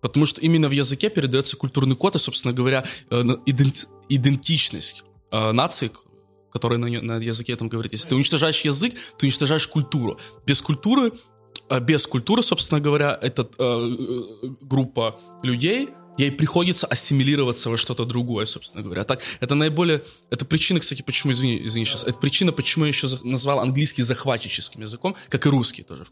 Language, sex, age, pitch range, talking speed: Russian, male, 20-39, 115-145 Hz, 155 wpm